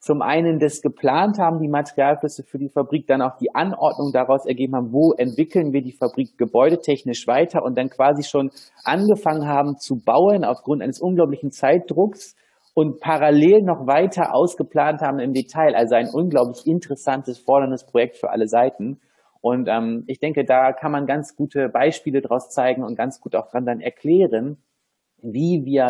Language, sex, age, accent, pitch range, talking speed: German, male, 30-49, German, 130-150 Hz, 170 wpm